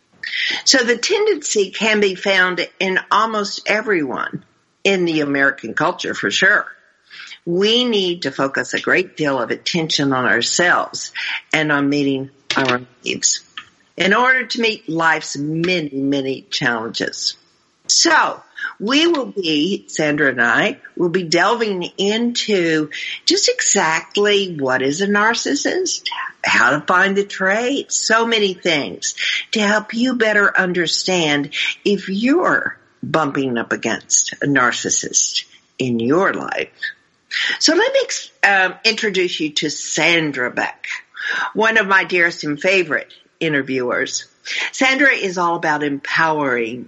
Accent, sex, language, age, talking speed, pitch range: American, female, English, 50-69, 130 wpm, 150-220 Hz